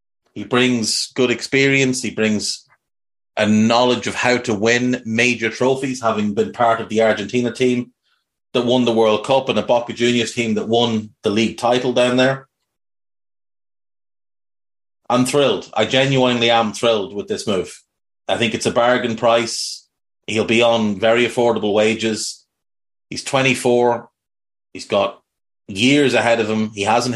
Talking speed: 150 wpm